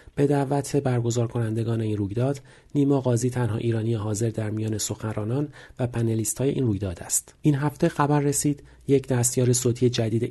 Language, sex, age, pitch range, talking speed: Persian, male, 40-59, 115-135 Hz, 145 wpm